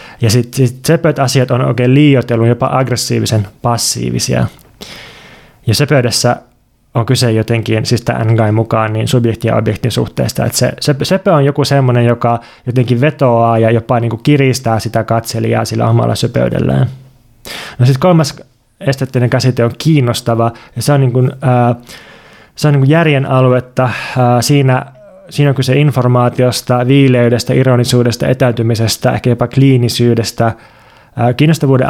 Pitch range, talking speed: 115-130 Hz, 130 wpm